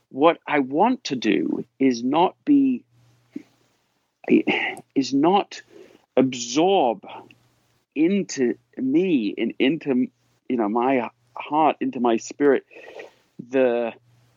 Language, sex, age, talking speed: English, male, 50-69, 100 wpm